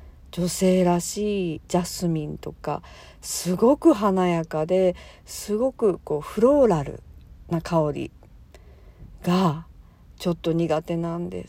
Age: 50-69